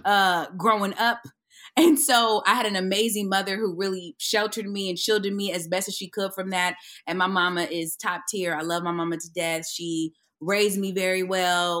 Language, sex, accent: English, female, American